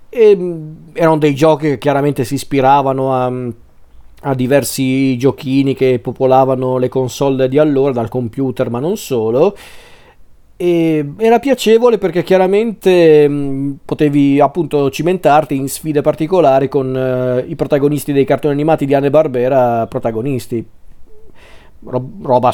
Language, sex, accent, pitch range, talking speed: Italian, male, native, 130-155 Hz, 115 wpm